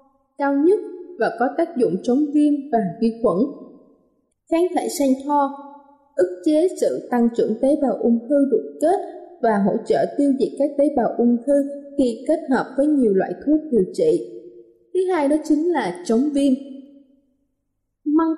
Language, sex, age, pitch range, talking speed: Vietnamese, female, 20-39, 235-305 Hz, 175 wpm